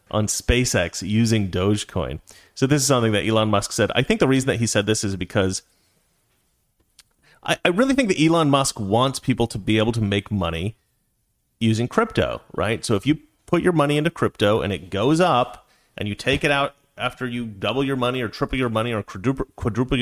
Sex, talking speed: male, 205 wpm